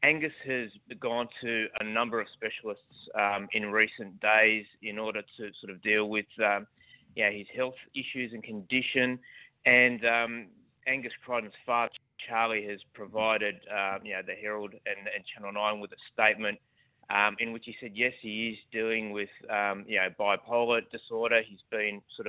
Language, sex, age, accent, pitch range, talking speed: English, male, 20-39, Australian, 105-120 Hz, 160 wpm